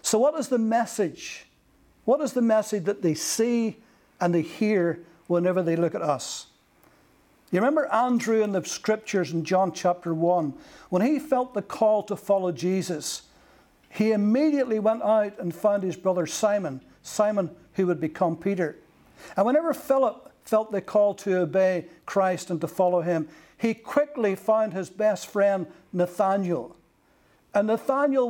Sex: male